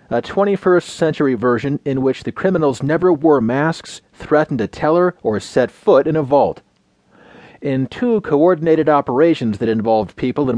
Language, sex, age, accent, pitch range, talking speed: English, male, 40-59, American, 120-170 Hz, 160 wpm